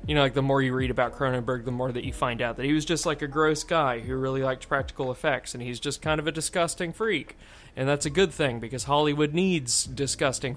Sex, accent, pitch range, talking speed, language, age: male, American, 120-145 Hz, 255 wpm, English, 20-39